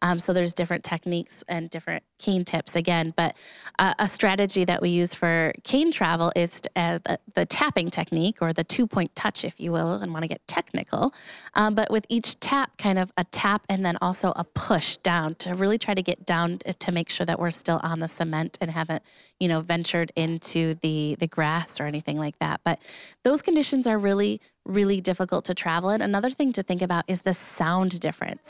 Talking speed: 215 wpm